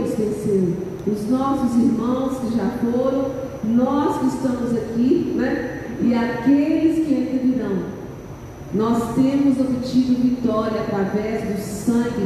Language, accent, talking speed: Portuguese, Brazilian, 110 wpm